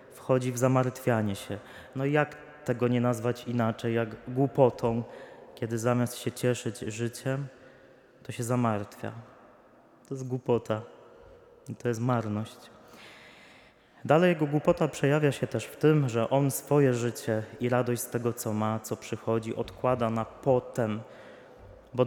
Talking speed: 140 wpm